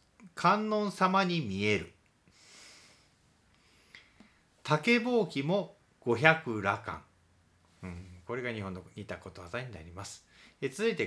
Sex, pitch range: male, 95-150 Hz